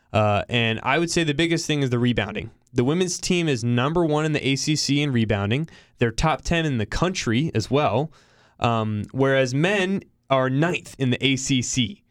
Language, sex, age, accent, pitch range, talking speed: English, male, 20-39, American, 115-150 Hz, 190 wpm